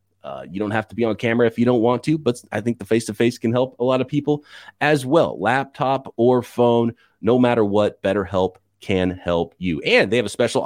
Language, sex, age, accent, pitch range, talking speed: English, male, 30-49, American, 100-135 Hz, 230 wpm